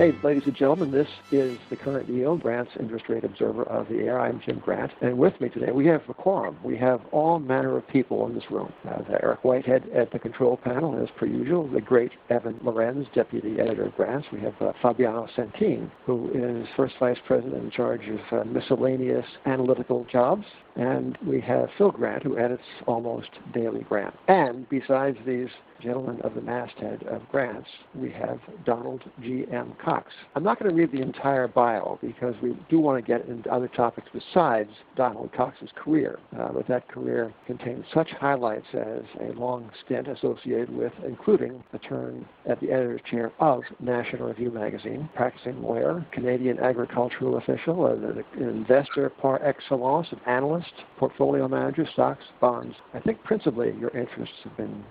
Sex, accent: male, American